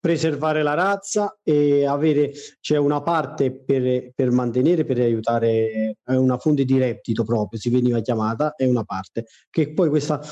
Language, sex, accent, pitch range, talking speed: Italian, male, native, 130-160 Hz, 165 wpm